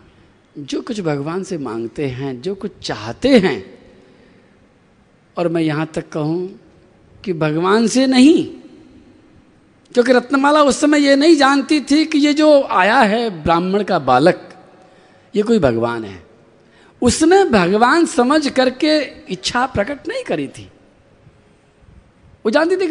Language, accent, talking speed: Hindi, native, 135 wpm